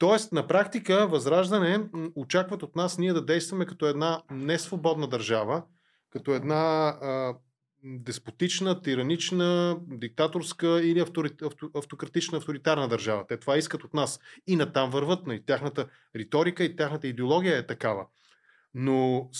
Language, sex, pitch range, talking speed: Bulgarian, male, 125-165 Hz, 135 wpm